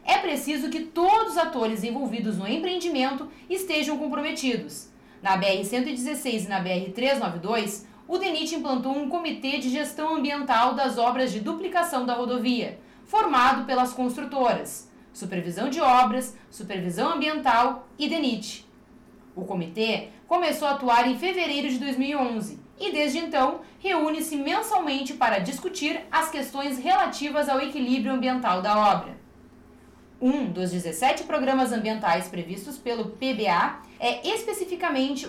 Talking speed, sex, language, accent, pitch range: 125 wpm, female, Portuguese, Brazilian, 235-310 Hz